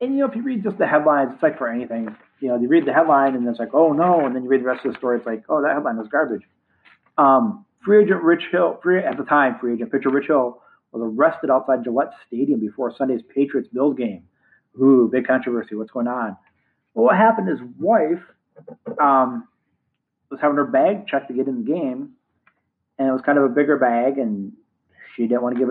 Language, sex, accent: English, male, American